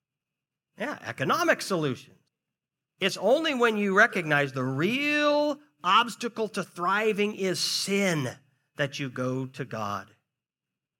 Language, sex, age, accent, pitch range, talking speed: English, male, 50-69, American, 125-175 Hz, 110 wpm